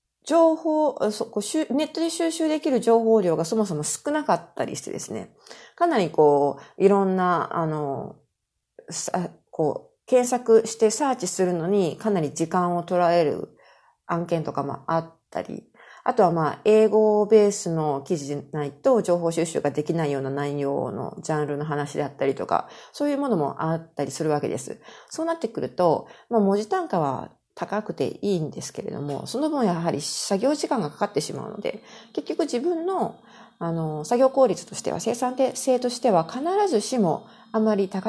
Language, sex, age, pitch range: Japanese, female, 40-59, 155-230 Hz